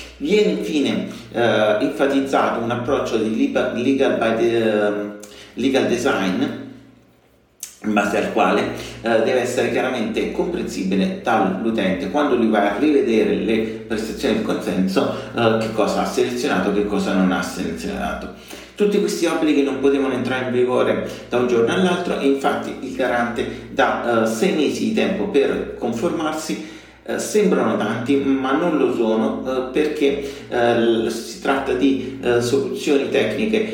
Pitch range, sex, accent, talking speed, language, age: 110-140 Hz, male, native, 140 wpm, Italian, 40-59